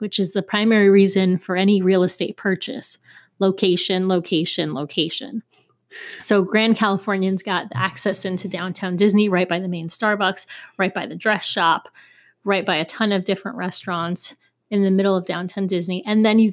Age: 30-49